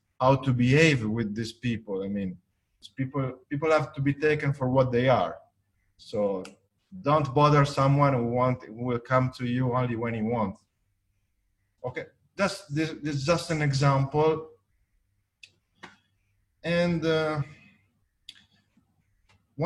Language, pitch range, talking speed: English, 105-145 Hz, 135 wpm